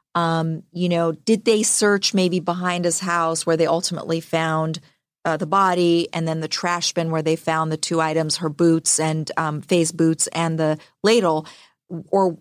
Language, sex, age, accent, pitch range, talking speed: English, female, 40-59, American, 165-200 Hz, 185 wpm